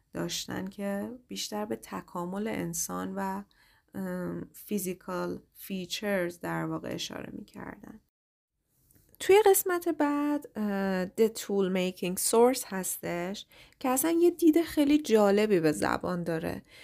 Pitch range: 185-270 Hz